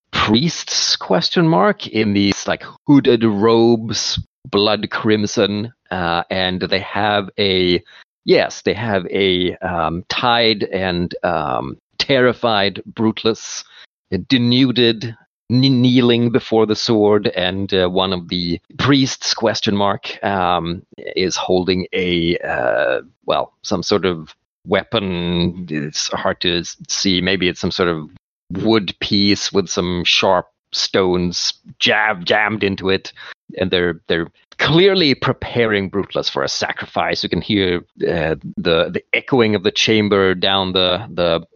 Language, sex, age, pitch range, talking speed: English, male, 40-59, 90-110 Hz, 130 wpm